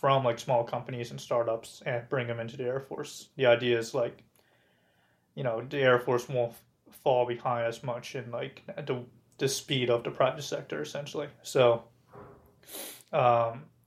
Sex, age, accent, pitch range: male, 20-39, American, 120-135 Hz